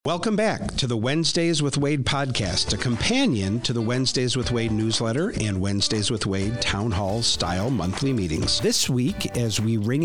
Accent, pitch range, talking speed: American, 105-130 Hz, 180 wpm